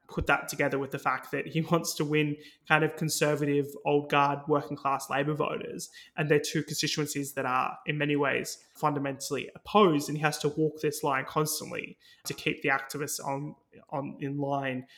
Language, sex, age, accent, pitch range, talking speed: English, male, 20-39, Australian, 140-155 Hz, 190 wpm